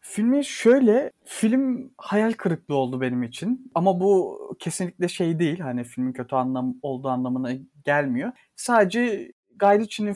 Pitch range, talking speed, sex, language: 135-210 Hz, 130 wpm, male, Turkish